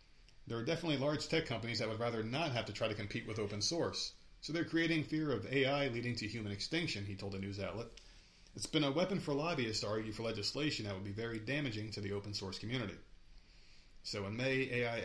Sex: male